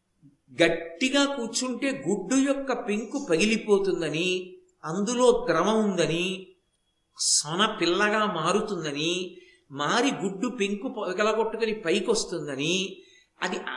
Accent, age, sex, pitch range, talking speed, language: native, 50-69, male, 195-260 Hz, 80 wpm, Telugu